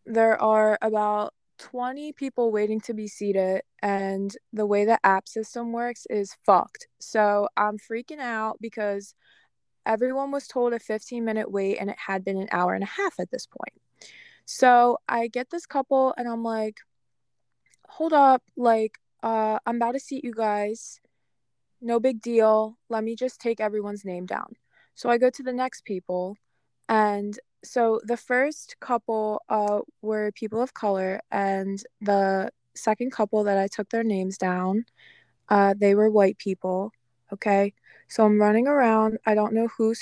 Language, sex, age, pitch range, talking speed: English, female, 20-39, 200-235 Hz, 165 wpm